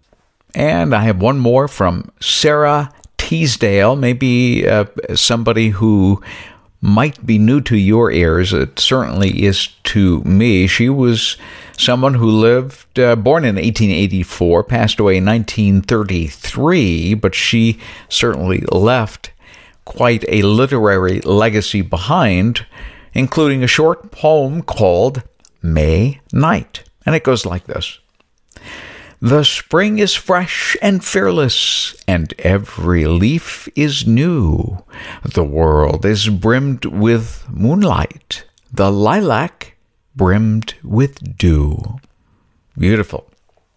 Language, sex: English, male